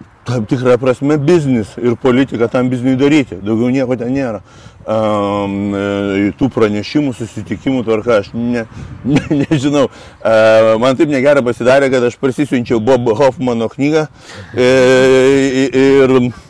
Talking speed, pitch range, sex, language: 140 wpm, 110-140 Hz, male, English